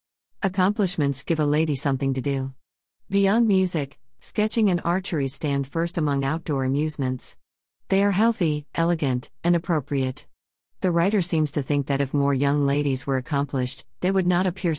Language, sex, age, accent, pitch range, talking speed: English, female, 50-69, American, 135-170 Hz, 160 wpm